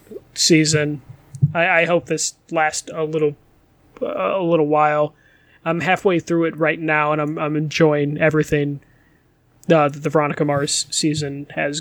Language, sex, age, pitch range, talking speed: English, male, 20-39, 150-170 Hz, 145 wpm